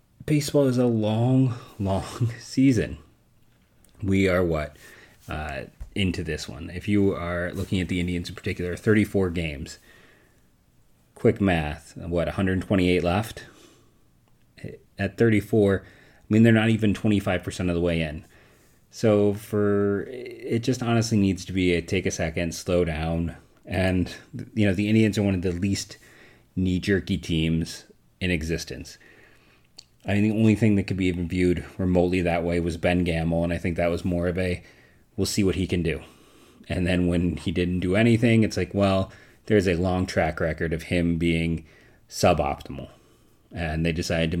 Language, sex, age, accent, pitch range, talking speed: English, male, 30-49, American, 85-105 Hz, 165 wpm